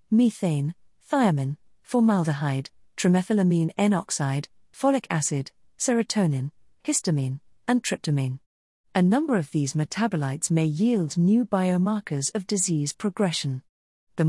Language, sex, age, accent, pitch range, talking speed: English, female, 40-59, British, 155-210 Hz, 100 wpm